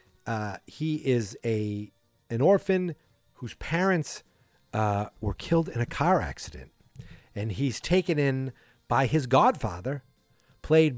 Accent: American